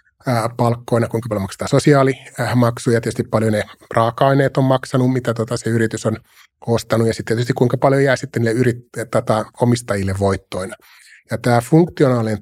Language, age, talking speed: Finnish, 30-49, 155 wpm